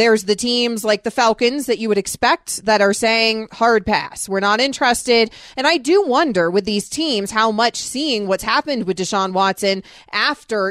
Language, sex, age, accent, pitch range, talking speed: English, female, 30-49, American, 195-245 Hz, 190 wpm